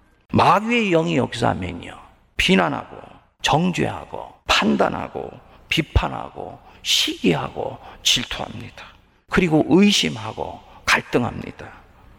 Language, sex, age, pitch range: Korean, male, 50-69, 95-155 Hz